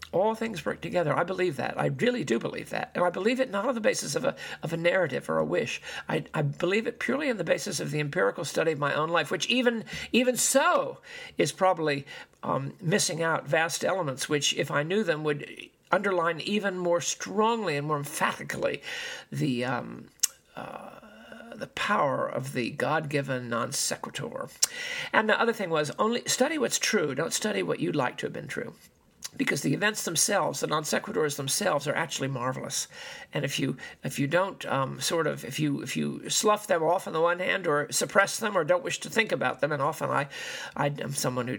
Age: 50-69